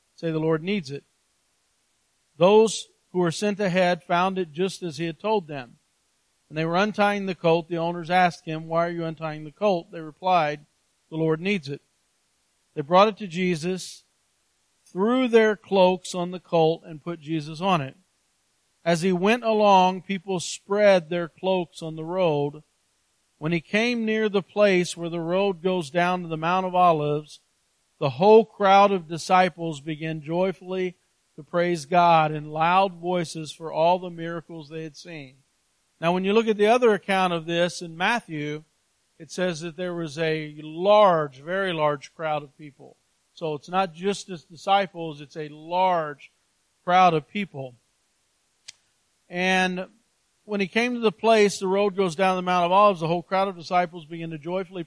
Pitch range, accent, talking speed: 160-190 Hz, American, 175 wpm